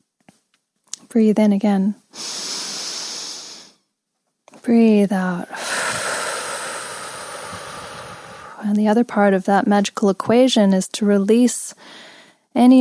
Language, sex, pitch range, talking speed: English, female, 185-220 Hz, 80 wpm